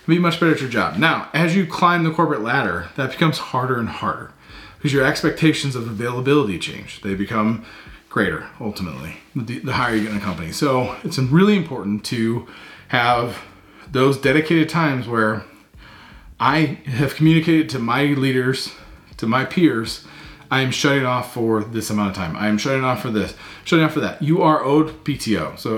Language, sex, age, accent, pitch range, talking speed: English, male, 30-49, American, 110-150 Hz, 185 wpm